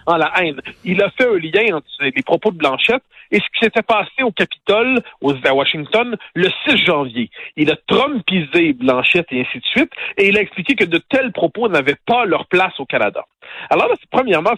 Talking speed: 210 wpm